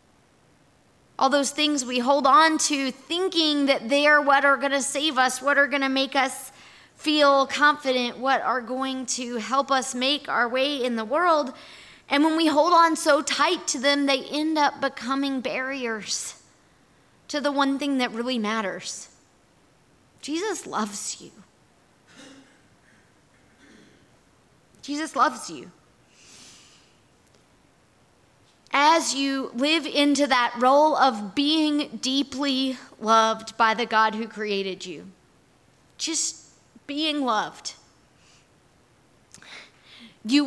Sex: female